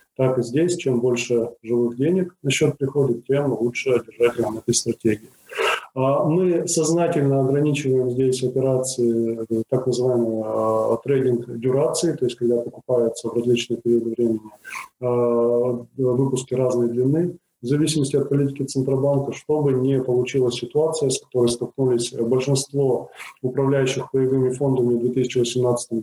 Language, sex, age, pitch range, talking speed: Russian, male, 20-39, 120-135 Hz, 120 wpm